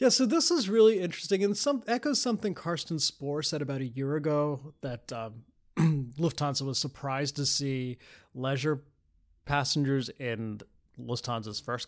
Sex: male